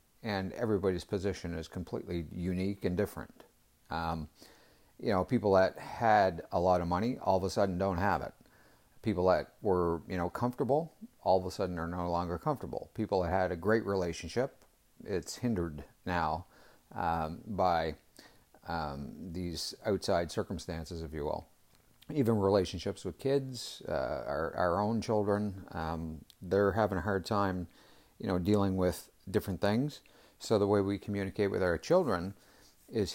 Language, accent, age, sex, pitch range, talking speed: English, American, 50-69, male, 90-110 Hz, 160 wpm